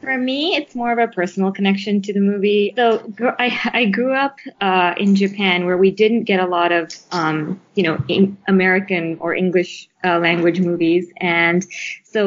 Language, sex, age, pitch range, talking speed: English, female, 20-39, 170-200 Hz, 185 wpm